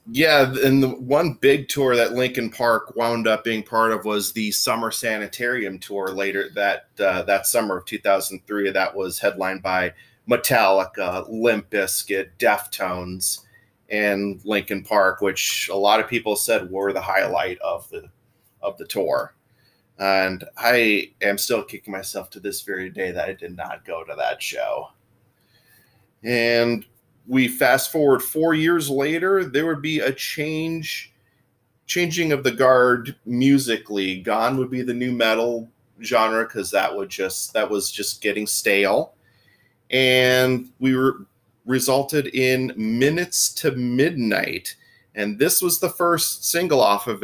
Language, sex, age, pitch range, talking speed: English, male, 30-49, 105-135 Hz, 150 wpm